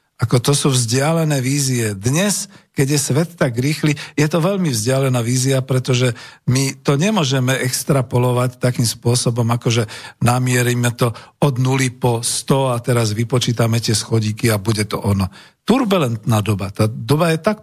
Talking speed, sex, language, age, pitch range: 155 wpm, male, Slovak, 50-69, 120-150 Hz